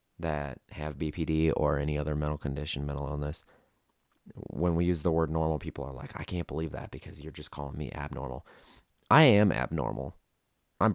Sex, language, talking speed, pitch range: male, English, 180 wpm, 75-95 Hz